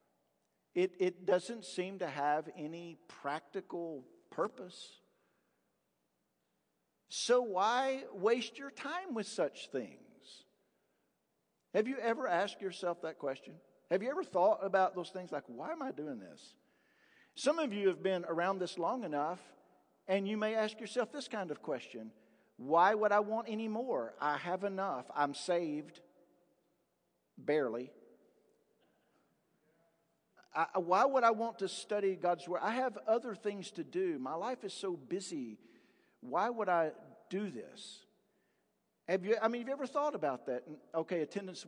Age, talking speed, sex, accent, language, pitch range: 50-69, 150 wpm, male, American, English, 150-215 Hz